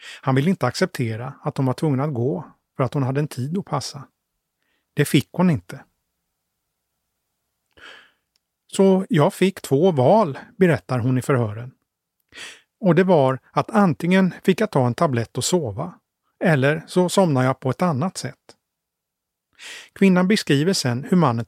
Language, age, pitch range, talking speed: Swedish, 30-49, 125-180 Hz, 155 wpm